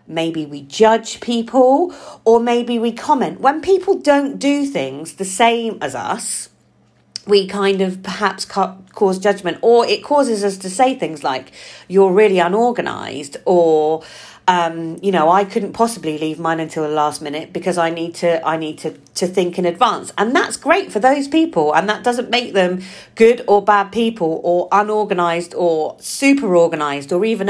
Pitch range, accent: 170-250 Hz, British